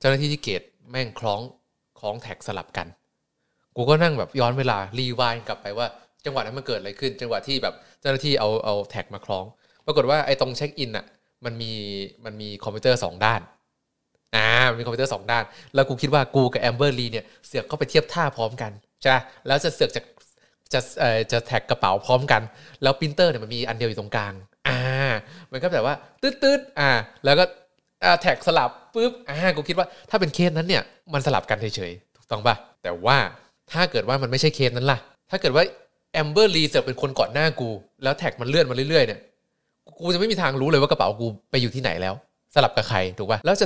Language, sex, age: Thai, male, 20-39